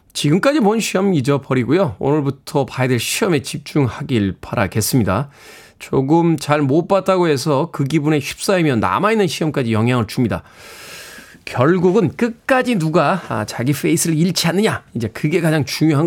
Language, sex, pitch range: Korean, male, 115-165 Hz